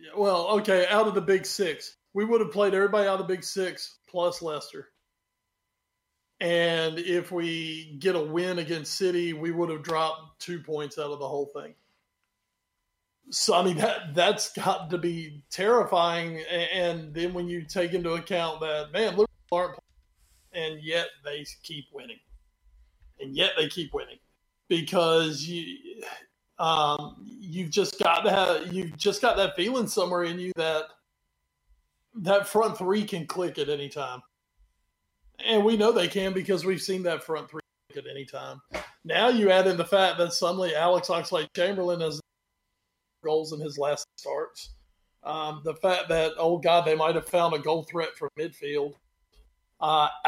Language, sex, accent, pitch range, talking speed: English, male, American, 155-190 Hz, 165 wpm